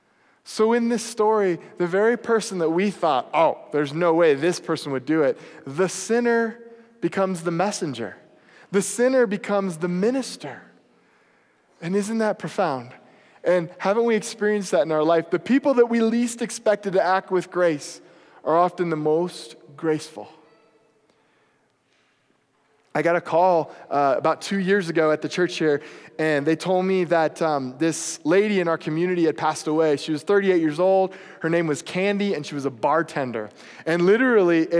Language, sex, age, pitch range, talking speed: English, male, 20-39, 160-205 Hz, 170 wpm